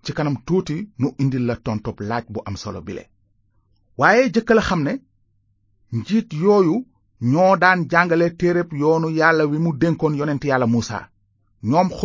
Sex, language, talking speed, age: male, French, 110 wpm, 30-49